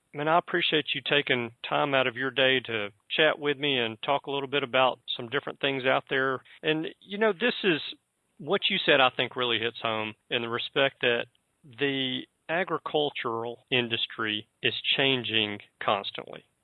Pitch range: 115-135 Hz